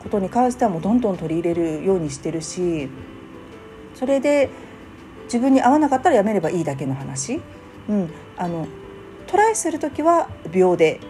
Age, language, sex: 40-59, Japanese, female